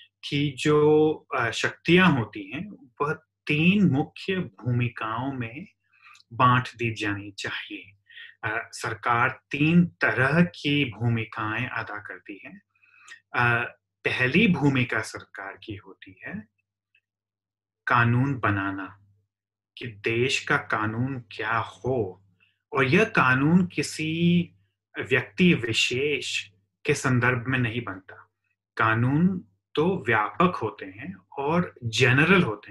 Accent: native